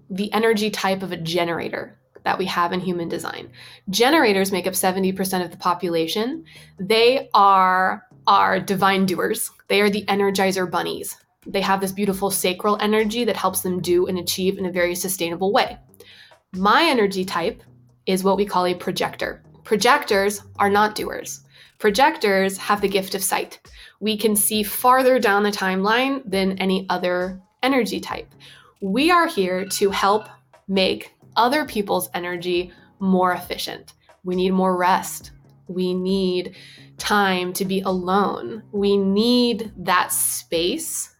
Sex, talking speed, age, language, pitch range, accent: female, 150 wpm, 20-39, English, 180-210 Hz, American